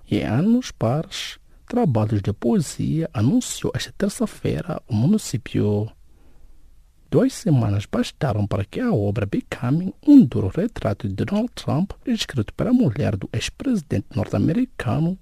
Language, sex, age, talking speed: English, male, 50-69, 130 wpm